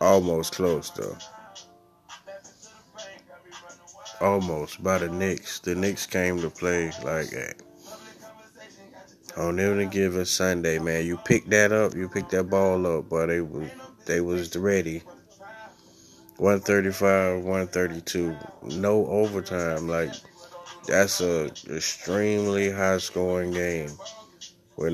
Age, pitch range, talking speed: 20-39, 85-105 Hz, 120 wpm